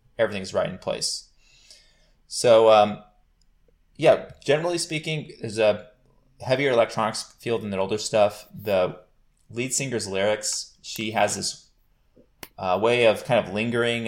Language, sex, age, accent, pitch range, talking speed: English, male, 20-39, American, 95-110 Hz, 130 wpm